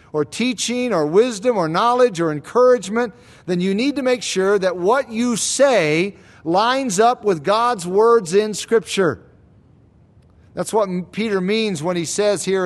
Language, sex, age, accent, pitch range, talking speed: English, male, 50-69, American, 160-220 Hz, 155 wpm